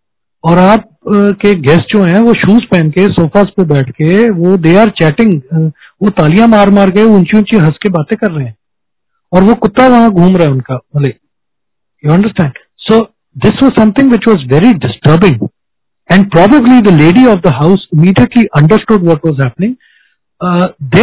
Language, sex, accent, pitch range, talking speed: Hindi, male, native, 160-215 Hz, 175 wpm